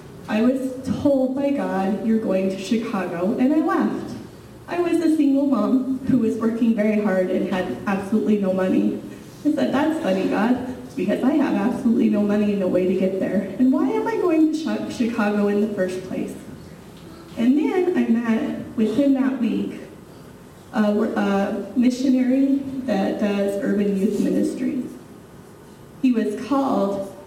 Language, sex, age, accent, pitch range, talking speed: English, female, 30-49, American, 200-255 Hz, 160 wpm